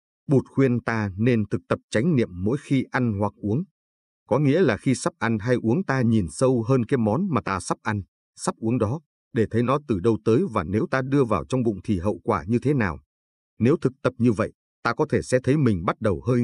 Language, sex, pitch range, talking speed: Vietnamese, male, 105-130 Hz, 245 wpm